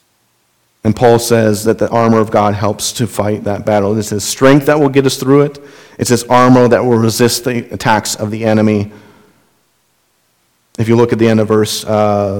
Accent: American